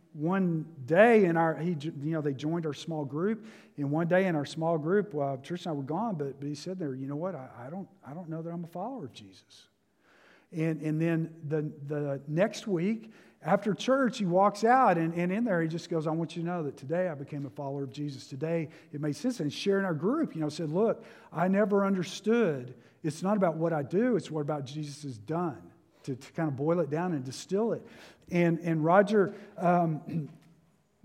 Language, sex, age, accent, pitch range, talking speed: English, male, 50-69, American, 155-190 Hz, 230 wpm